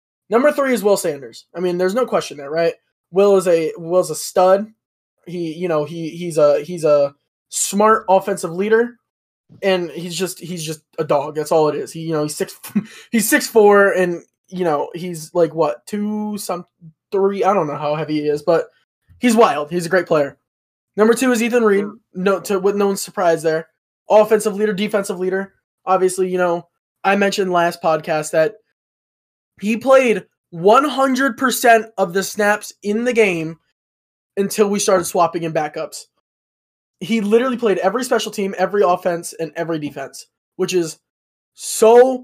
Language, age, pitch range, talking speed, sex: English, 20-39, 170-215 Hz, 175 wpm, male